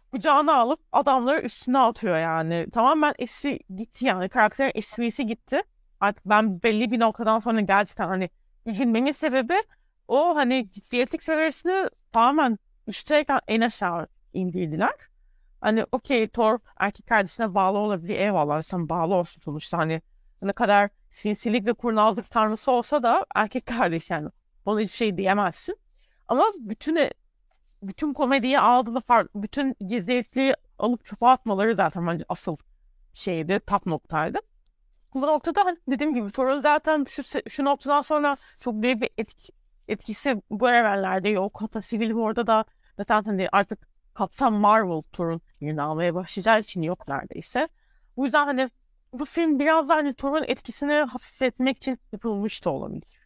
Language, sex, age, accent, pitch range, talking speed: Turkish, female, 30-49, native, 200-270 Hz, 140 wpm